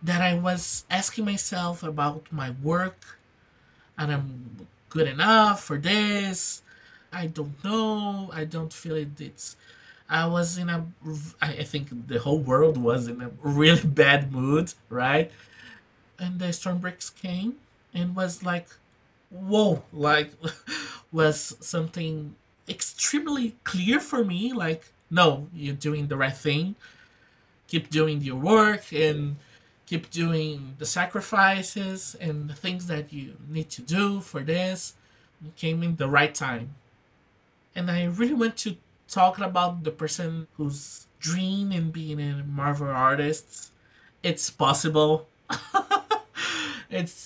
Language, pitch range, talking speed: English, 145-180 Hz, 135 wpm